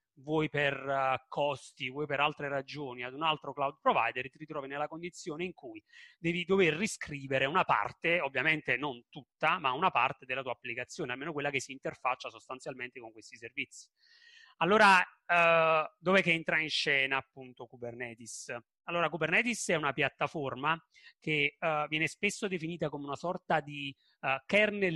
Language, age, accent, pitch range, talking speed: Italian, 30-49, native, 135-170 Hz, 150 wpm